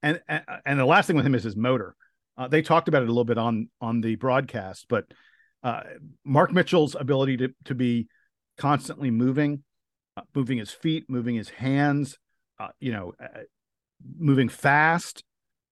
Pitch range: 130-170 Hz